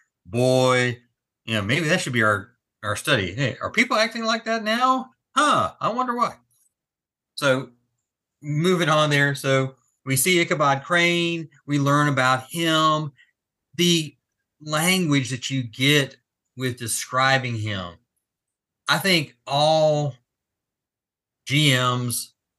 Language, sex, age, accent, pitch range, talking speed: English, male, 30-49, American, 115-145 Hz, 120 wpm